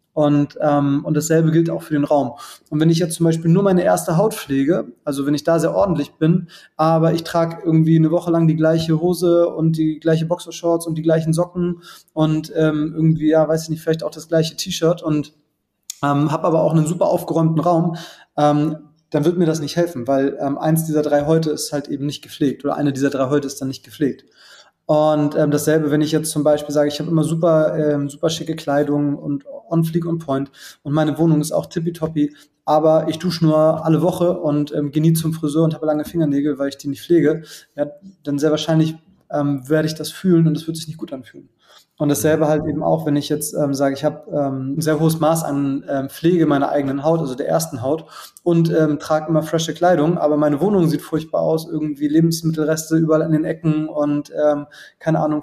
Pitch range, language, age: 150-160 Hz, German, 20-39